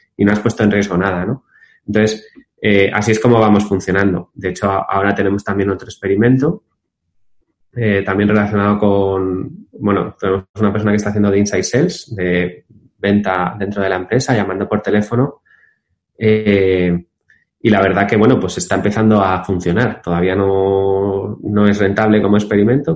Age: 20-39